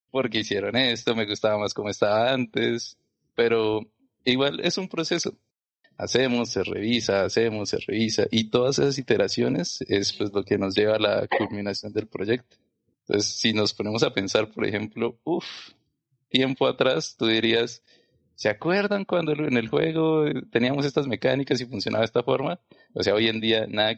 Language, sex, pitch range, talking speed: Spanish, male, 105-120 Hz, 170 wpm